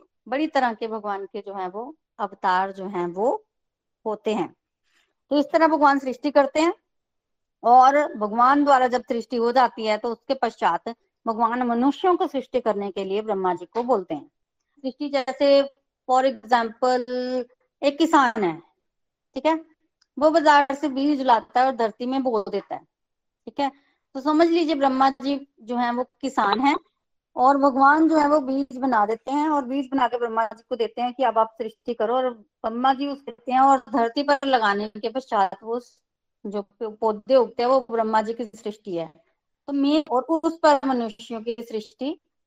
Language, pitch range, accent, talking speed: Hindi, 225-280 Hz, native, 170 wpm